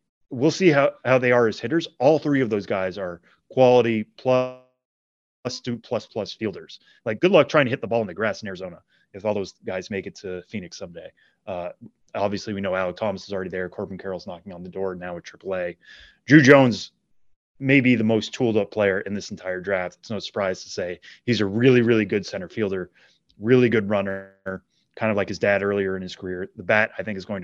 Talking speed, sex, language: 215 wpm, male, English